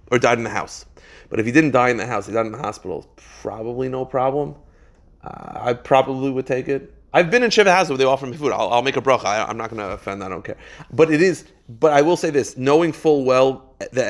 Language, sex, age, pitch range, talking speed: English, male, 30-49, 110-145 Hz, 270 wpm